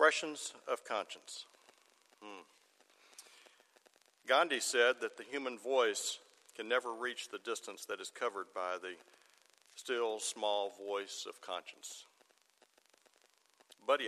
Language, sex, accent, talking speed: English, male, American, 115 wpm